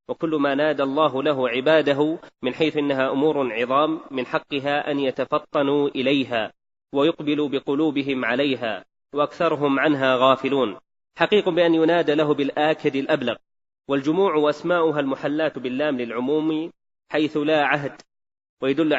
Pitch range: 140-160 Hz